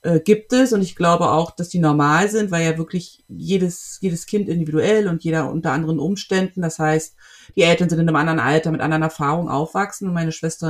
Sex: female